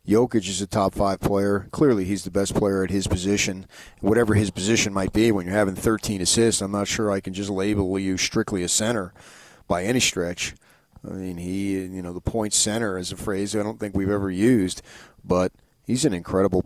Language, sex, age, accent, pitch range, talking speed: English, male, 40-59, American, 95-110 Hz, 215 wpm